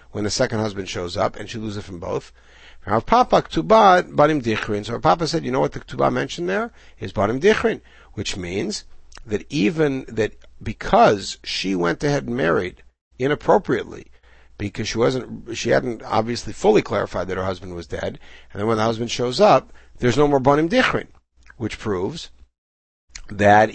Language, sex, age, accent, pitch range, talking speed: English, male, 60-79, American, 100-130 Hz, 175 wpm